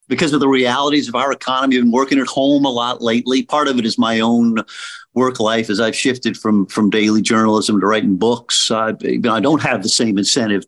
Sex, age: male, 50-69